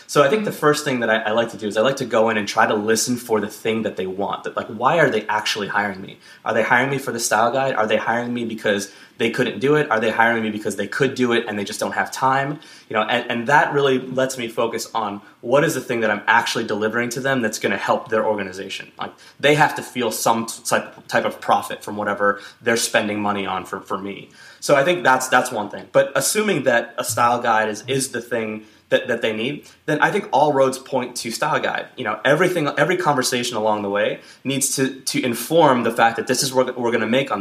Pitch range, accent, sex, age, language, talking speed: 110-130 Hz, American, male, 20-39, English, 265 wpm